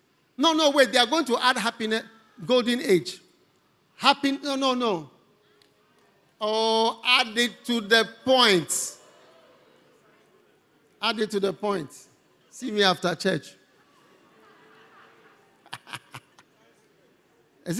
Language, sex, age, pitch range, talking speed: English, male, 50-69, 150-250 Hz, 105 wpm